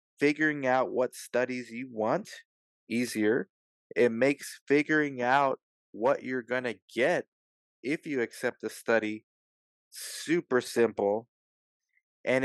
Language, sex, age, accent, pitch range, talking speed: English, male, 20-39, American, 110-135 Hz, 115 wpm